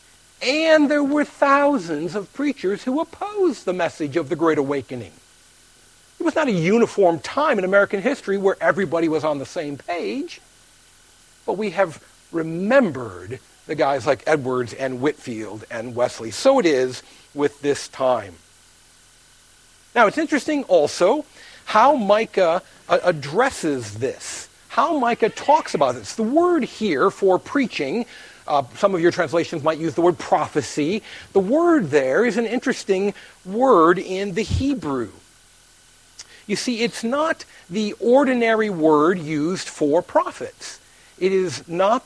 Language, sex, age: English, male, 50-69